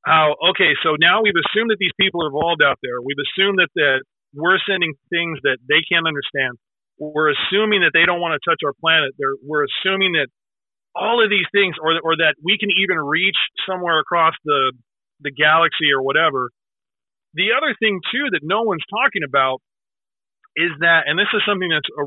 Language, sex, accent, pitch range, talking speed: English, male, American, 155-200 Hz, 200 wpm